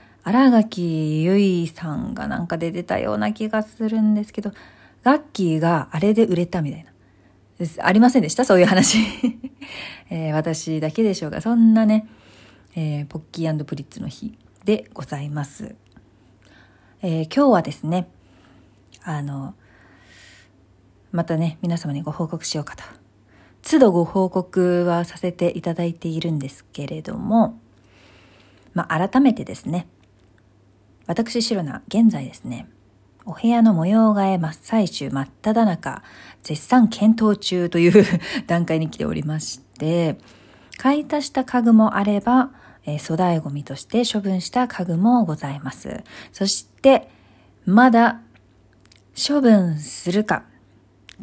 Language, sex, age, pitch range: Japanese, female, 40-59, 135-220 Hz